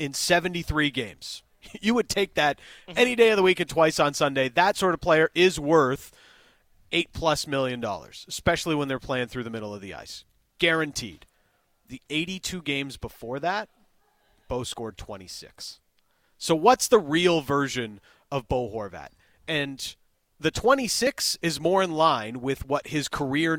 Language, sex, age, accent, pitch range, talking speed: English, male, 30-49, American, 130-165 Hz, 165 wpm